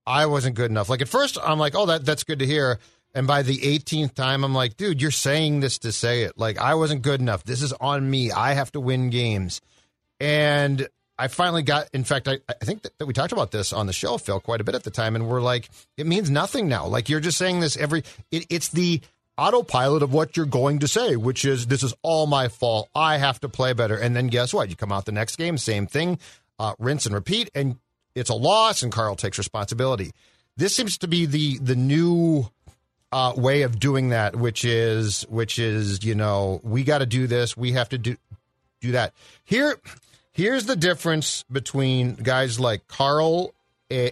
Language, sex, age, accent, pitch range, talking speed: English, male, 40-59, American, 115-150 Hz, 220 wpm